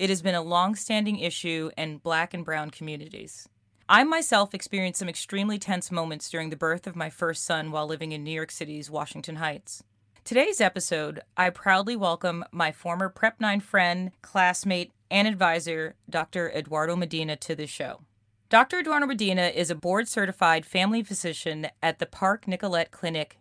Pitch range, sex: 160-195 Hz, female